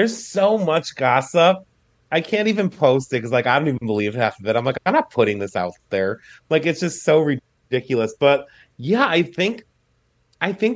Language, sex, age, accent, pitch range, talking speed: English, male, 30-49, American, 115-145 Hz, 205 wpm